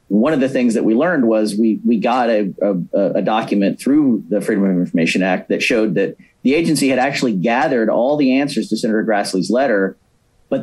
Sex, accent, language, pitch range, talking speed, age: male, American, English, 95-115 Hz, 210 wpm, 40-59